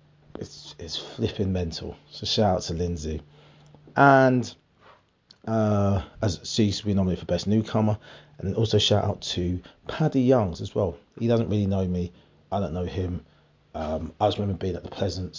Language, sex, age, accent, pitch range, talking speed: English, male, 30-49, British, 85-115 Hz, 175 wpm